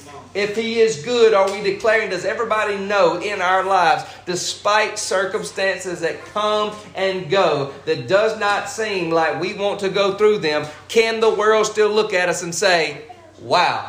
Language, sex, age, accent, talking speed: English, male, 40-59, American, 175 wpm